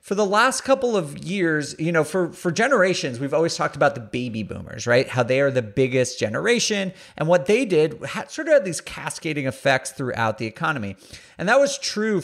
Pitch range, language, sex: 130-185 Hz, English, male